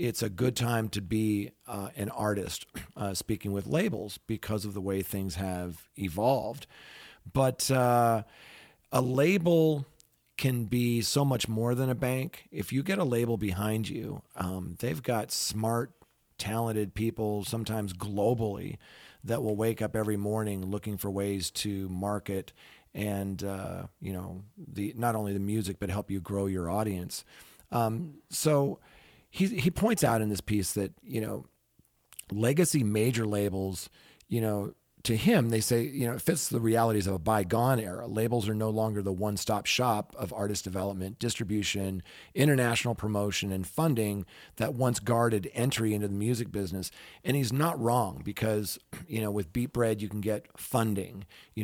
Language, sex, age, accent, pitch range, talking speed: English, male, 40-59, American, 100-120 Hz, 165 wpm